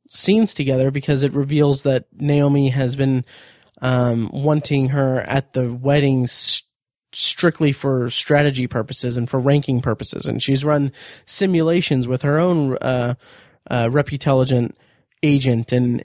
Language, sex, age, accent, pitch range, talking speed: English, male, 30-49, American, 130-150 Hz, 130 wpm